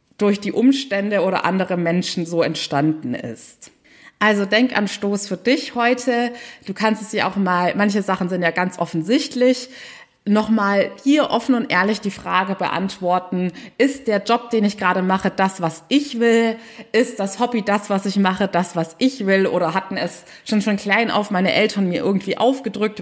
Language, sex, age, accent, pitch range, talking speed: German, female, 20-39, German, 185-235 Hz, 180 wpm